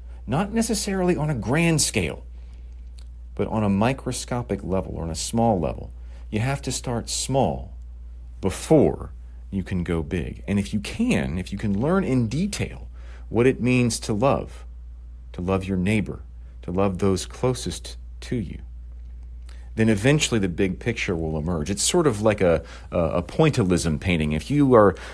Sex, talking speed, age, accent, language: male, 165 wpm, 40-59, American, English